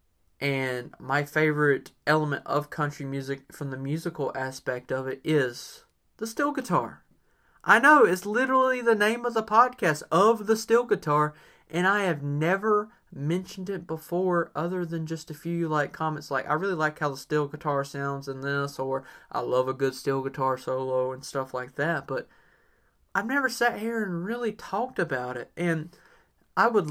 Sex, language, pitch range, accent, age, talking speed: male, English, 135-175 Hz, American, 20-39, 180 wpm